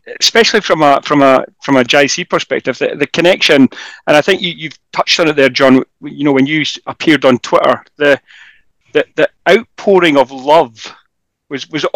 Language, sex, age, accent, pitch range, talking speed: English, male, 40-59, British, 135-175 Hz, 185 wpm